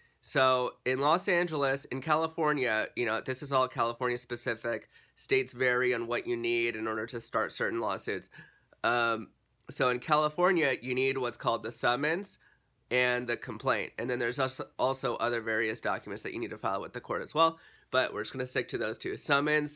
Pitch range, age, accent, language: 120-140 Hz, 30-49, American, English